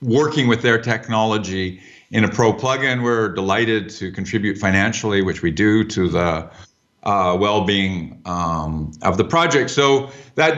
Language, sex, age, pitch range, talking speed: English, male, 50-69, 110-145 Hz, 155 wpm